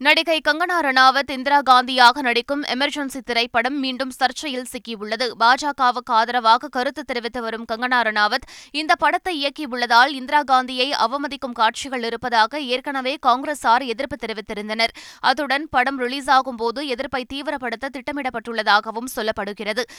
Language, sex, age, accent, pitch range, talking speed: Tamil, female, 20-39, native, 235-275 Hz, 100 wpm